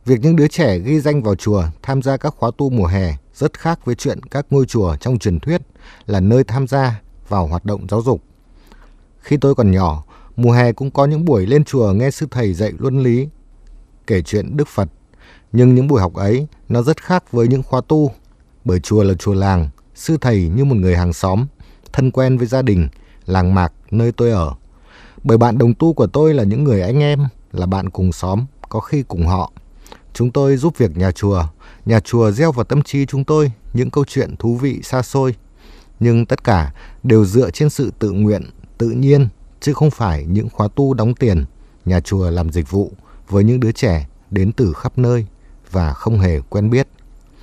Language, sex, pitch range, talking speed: Vietnamese, male, 95-135 Hz, 215 wpm